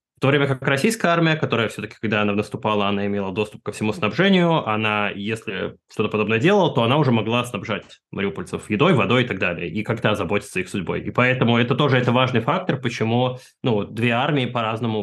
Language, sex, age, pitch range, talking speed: Russian, male, 20-39, 105-125 Hz, 200 wpm